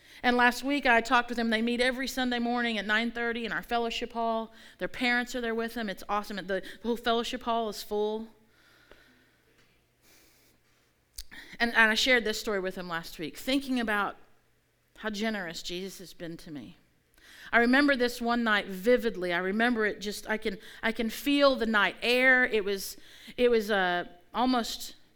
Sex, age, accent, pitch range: female, 40-59, American, 200-240 Hz